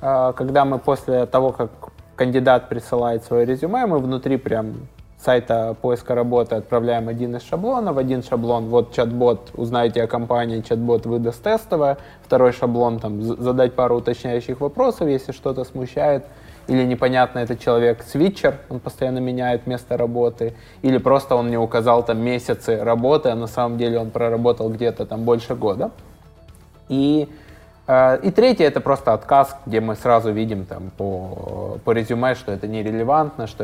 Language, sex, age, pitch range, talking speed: Russian, male, 20-39, 110-130 Hz, 155 wpm